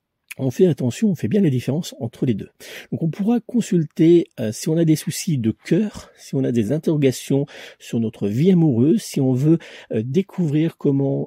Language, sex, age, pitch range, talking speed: French, male, 50-69, 120-170 Hz, 200 wpm